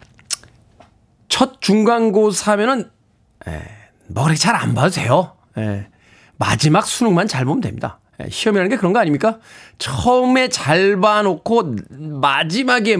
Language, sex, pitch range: Korean, male, 125-195 Hz